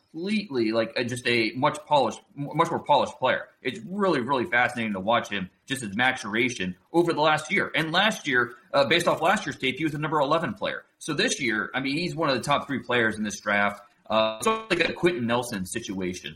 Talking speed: 225 wpm